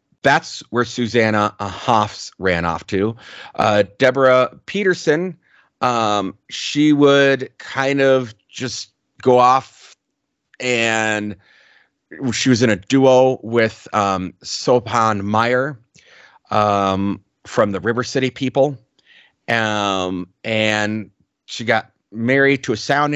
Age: 30-49